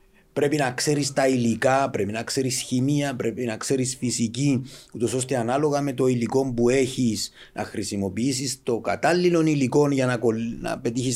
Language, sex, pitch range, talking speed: Greek, male, 100-130 Hz, 160 wpm